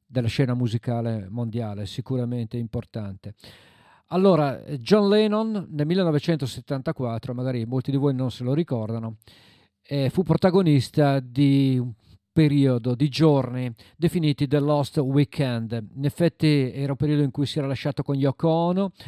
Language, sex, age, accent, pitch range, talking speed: Italian, male, 50-69, native, 125-160 Hz, 140 wpm